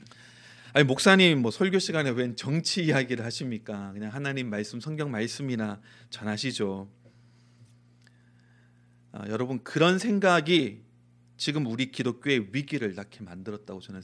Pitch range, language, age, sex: 110-155 Hz, Korean, 30-49, male